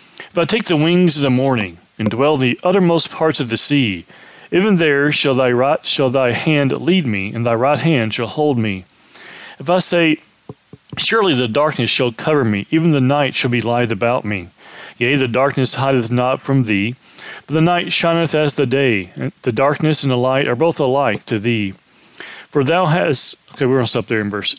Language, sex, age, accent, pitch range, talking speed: English, male, 40-59, American, 120-145 Hz, 210 wpm